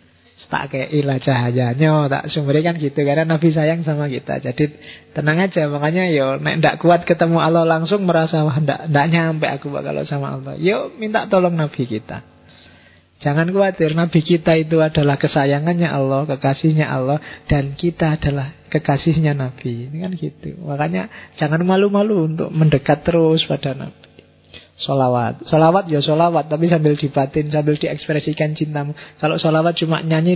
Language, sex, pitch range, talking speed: Indonesian, male, 130-160 Hz, 150 wpm